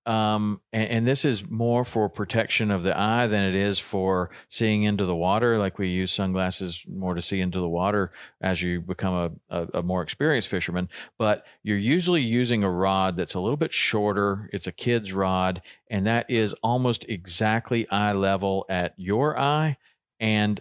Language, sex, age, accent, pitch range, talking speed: English, male, 40-59, American, 95-110 Hz, 185 wpm